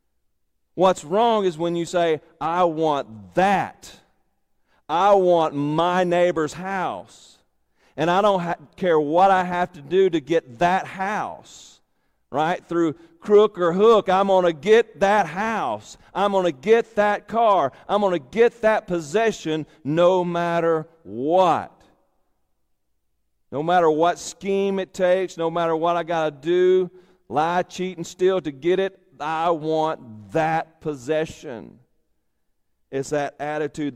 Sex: male